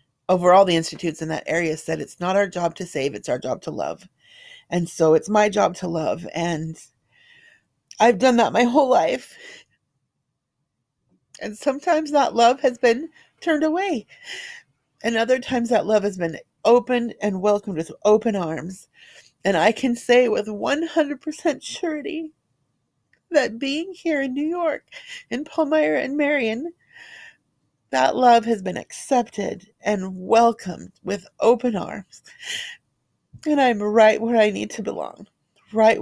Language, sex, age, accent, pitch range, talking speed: English, female, 40-59, American, 215-330 Hz, 150 wpm